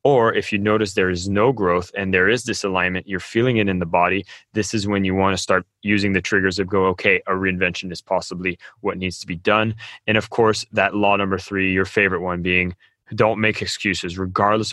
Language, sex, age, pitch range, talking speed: English, male, 20-39, 95-120 Hz, 220 wpm